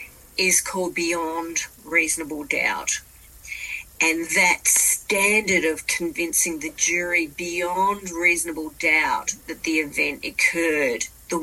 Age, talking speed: 40-59, 105 wpm